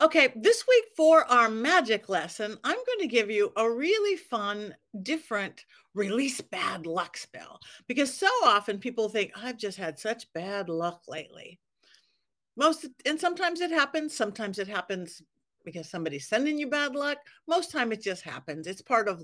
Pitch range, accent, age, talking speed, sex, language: 190-270 Hz, American, 50-69, 170 wpm, female, English